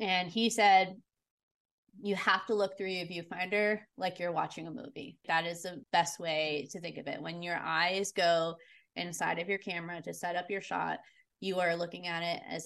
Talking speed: 205 wpm